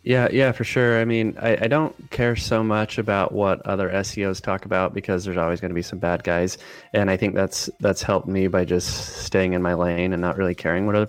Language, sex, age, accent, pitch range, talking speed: English, male, 20-39, American, 90-110 Hz, 250 wpm